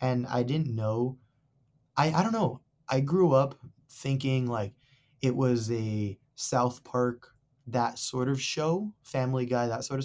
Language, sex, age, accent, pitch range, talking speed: English, male, 20-39, American, 120-135 Hz, 160 wpm